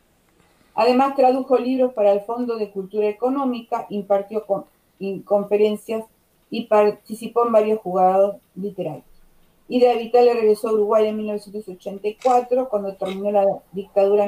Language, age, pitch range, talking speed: Spanish, 40-59, 205-245 Hz, 125 wpm